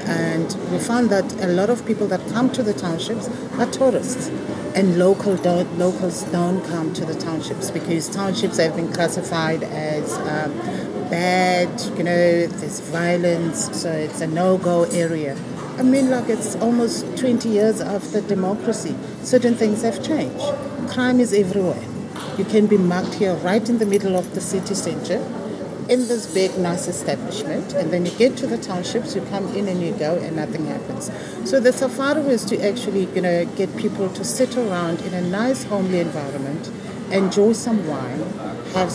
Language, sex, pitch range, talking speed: English, female, 175-225 Hz, 175 wpm